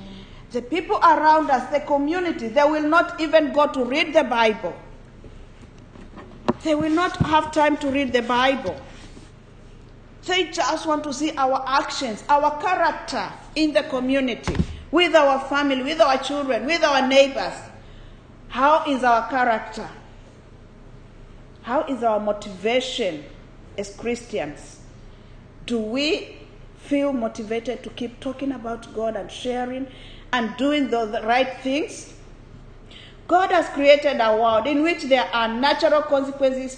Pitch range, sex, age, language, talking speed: 210-285 Hz, female, 40-59, English, 135 wpm